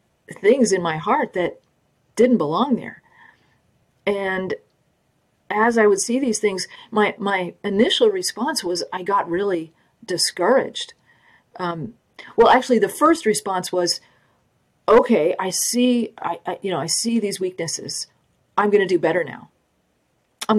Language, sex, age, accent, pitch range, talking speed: English, female, 40-59, American, 175-230 Hz, 145 wpm